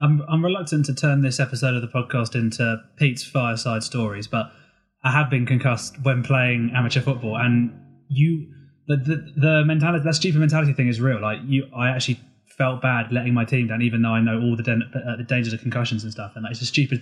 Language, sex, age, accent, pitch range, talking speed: English, male, 20-39, British, 120-135 Hz, 225 wpm